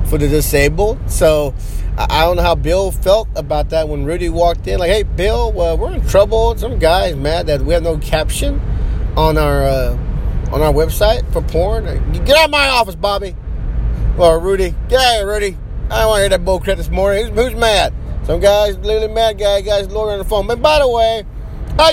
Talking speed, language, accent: 225 wpm, English, American